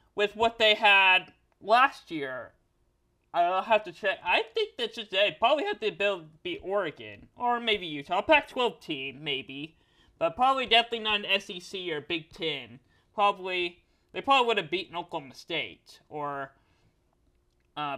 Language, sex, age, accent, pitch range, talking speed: English, male, 30-49, American, 175-245 Hz, 160 wpm